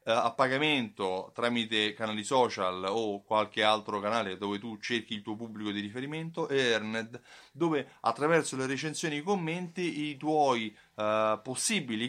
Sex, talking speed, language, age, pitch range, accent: male, 145 wpm, Italian, 30-49, 110-160 Hz, native